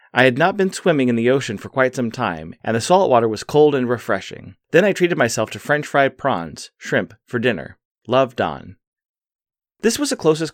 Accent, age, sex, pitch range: American, 30-49, male, 105-135 Hz